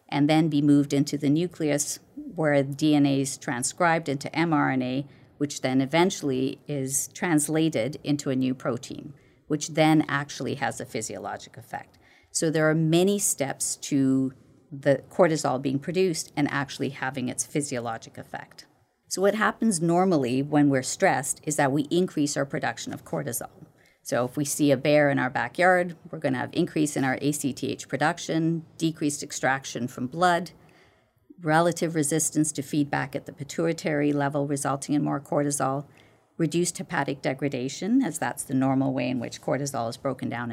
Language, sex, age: English, female, 50-69